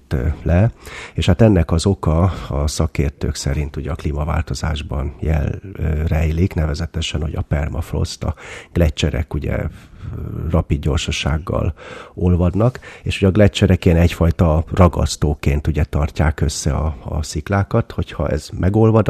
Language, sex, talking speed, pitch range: Hungarian, male, 120 wpm, 75-90 Hz